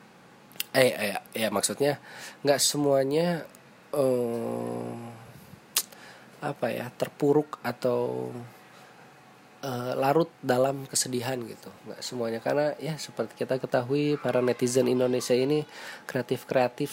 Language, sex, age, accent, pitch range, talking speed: Indonesian, male, 20-39, native, 130-180 Hz, 110 wpm